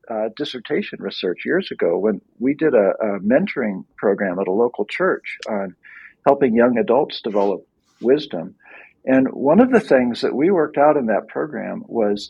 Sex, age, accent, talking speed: male, 50-69, American, 170 wpm